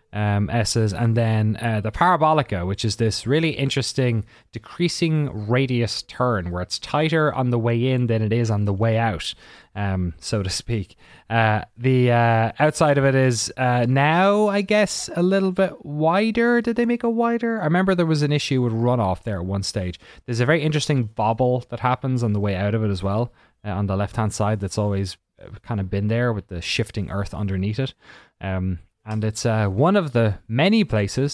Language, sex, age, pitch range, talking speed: English, male, 20-39, 100-140 Hz, 205 wpm